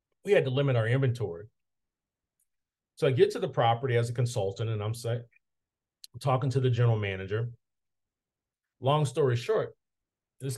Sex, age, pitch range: male, 40-59, 105-135 Hz